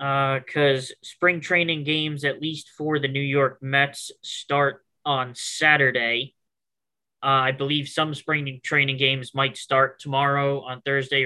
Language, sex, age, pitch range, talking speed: English, male, 20-39, 130-140 Hz, 145 wpm